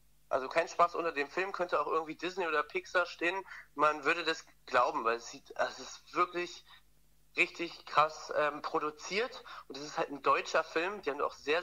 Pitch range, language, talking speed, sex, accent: 145-180 Hz, German, 200 wpm, male, German